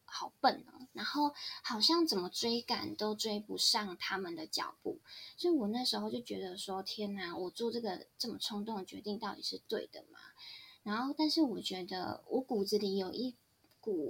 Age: 20-39